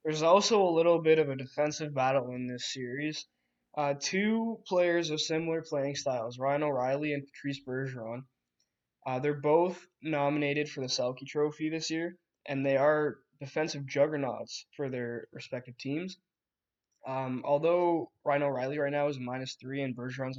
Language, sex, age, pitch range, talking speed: English, male, 10-29, 130-150 Hz, 160 wpm